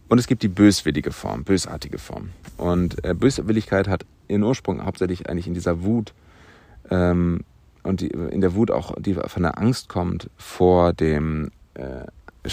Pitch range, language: 80-95 Hz, German